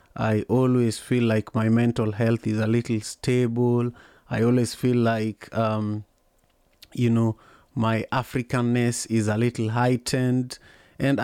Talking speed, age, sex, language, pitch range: 135 wpm, 30-49, male, English, 110-120 Hz